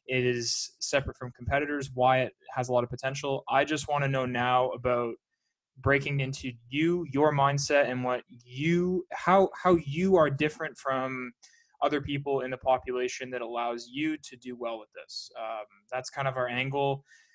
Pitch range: 125-150 Hz